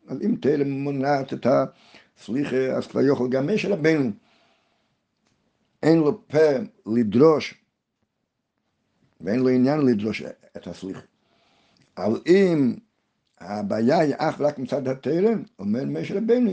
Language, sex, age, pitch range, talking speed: Hebrew, male, 60-79, 135-210 Hz, 120 wpm